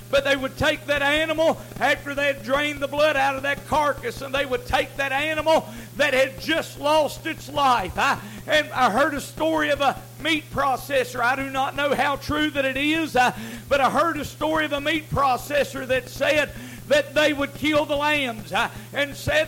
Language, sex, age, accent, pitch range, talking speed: English, male, 50-69, American, 280-310 Hz, 210 wpm